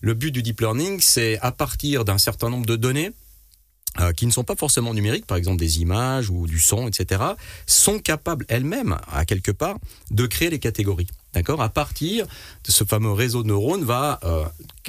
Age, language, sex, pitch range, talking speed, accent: 40-59, French, male, 90-125 Hz, 200 wpm, French